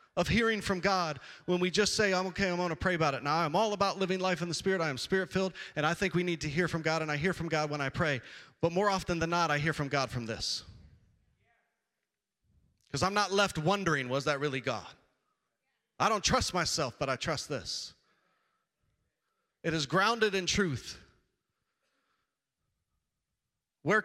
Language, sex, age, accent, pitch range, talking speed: English, male, 40-59, American, 140-180 Hz, 195 wpm